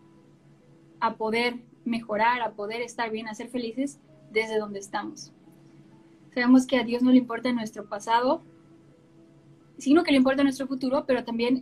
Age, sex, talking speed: 10-29, female, 155 wpm